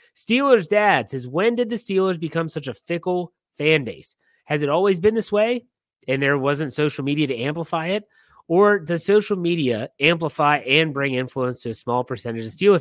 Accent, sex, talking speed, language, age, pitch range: American, male, 190 wpm, English, 30-49, 145-195 Hz